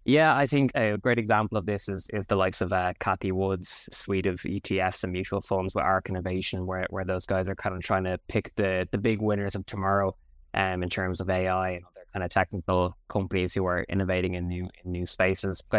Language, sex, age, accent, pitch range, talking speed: English, male, 10-29, Irish, 90-100 Hz, 230 wpm